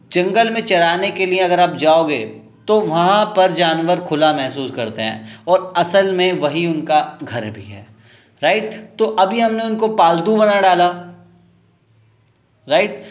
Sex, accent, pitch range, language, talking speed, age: male, native, 160-210 Hz, Hindi, 150 wpm, 20-39